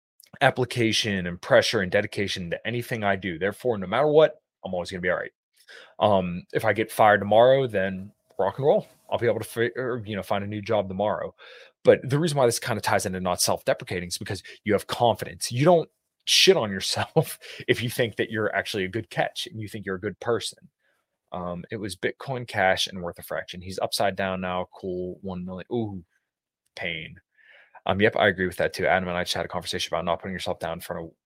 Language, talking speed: English, 230 wpm